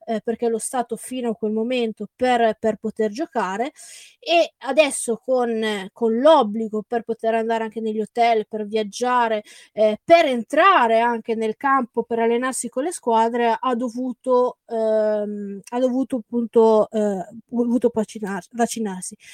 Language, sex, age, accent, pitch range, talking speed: Italian, female, 20-39, native, 225-280 Hz, 140 wpm